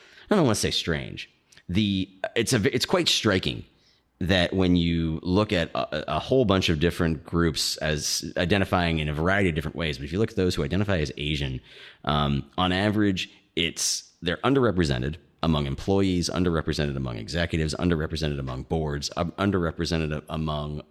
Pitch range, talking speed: 75-90 Hz, 165 wpm